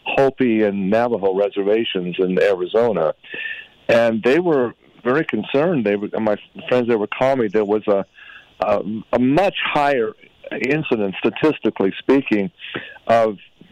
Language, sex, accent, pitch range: English, male, American, 100-125 Hz